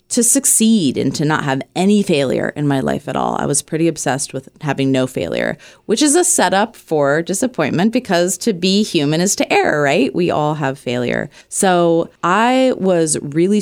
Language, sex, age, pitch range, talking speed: English, female, 20-39, 145-190 Hz, 190 wpm